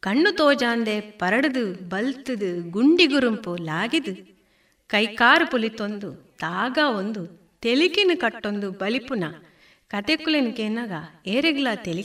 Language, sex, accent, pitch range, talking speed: Kannada, female, native, 215-300 Hz, 75 wpm